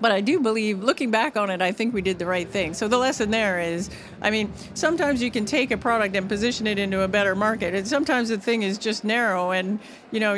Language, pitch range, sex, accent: English, 185-225 Hz, female, American